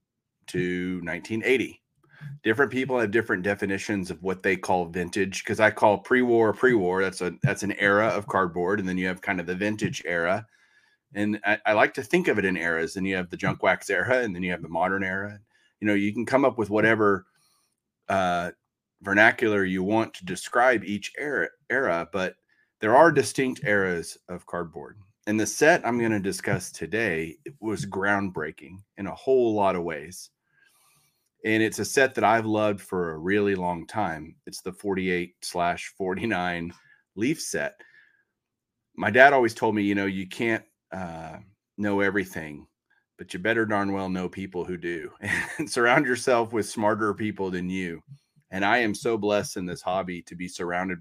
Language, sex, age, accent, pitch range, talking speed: English, male, 30-49, American, 90-110 Hz, 185 wpm